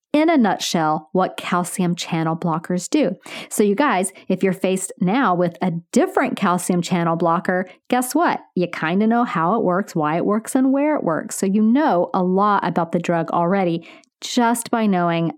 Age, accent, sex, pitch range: 40-59, American, female, 175-240 Hz